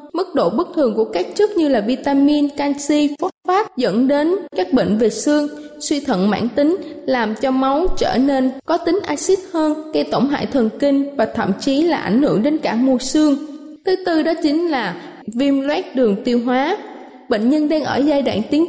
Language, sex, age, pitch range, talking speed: Vietnamese, female, 20-39, 245-320 Hz, 205 wpm